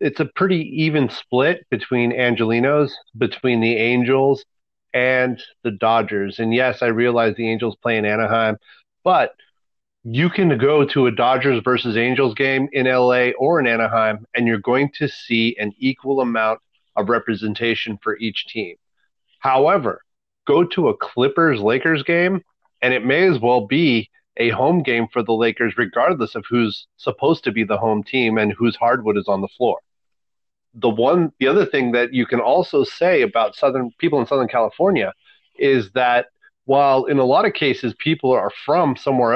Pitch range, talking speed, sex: 115-145 Hz, 170 wpm, male